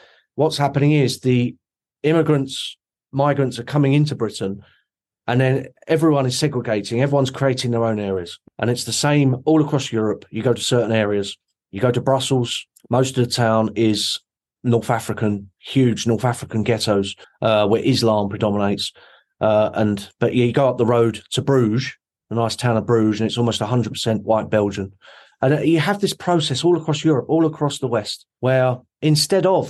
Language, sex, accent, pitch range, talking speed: English, male, British, 110-145 Hz, 180 wpm